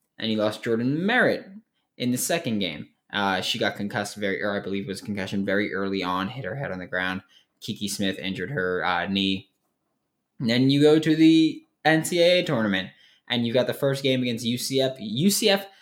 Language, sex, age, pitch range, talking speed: English, male, 20-39, 100-145 Hz, 190 wpm